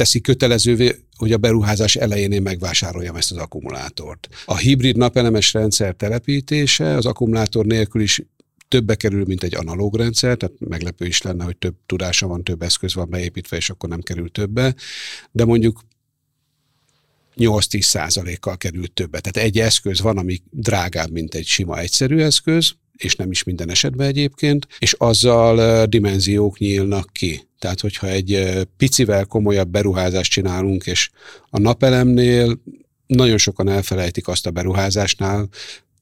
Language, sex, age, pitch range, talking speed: Hungarian, male, 50-69, 90-115 Hz, 145 wpm